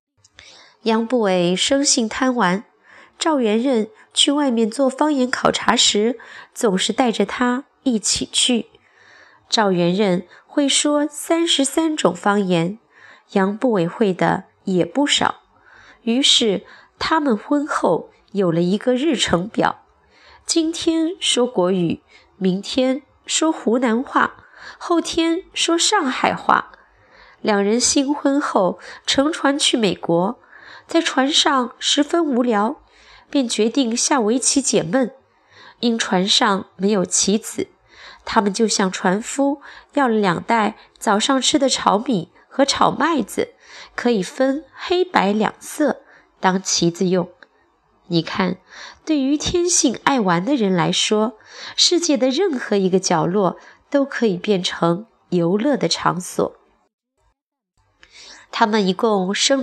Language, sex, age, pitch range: Chinese, female, 20-39, 195-285 Hz